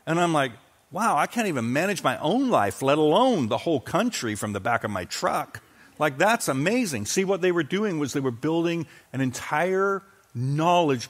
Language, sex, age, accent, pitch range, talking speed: English, male, 50-69, American, 110-155 Hz, 200 wpm